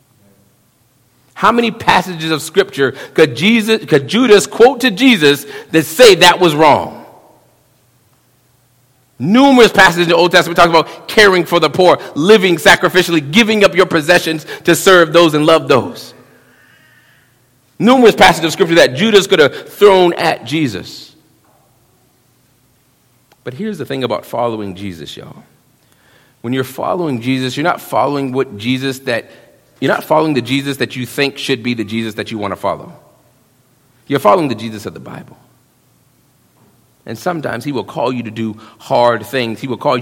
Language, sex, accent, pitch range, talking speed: English, male, American, 115-165 Hz, 160 wpm